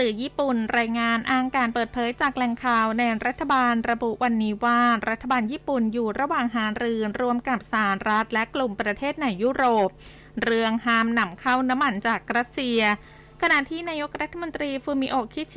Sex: female